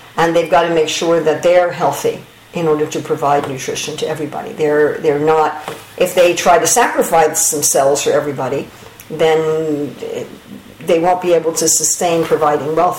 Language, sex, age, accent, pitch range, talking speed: English, female, 50-69, American, 150-175 Hz, 165 wpm